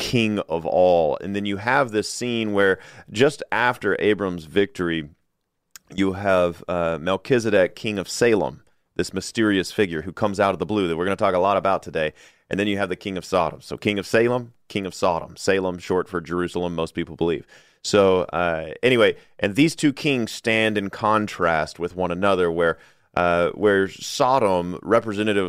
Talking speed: 185 wpm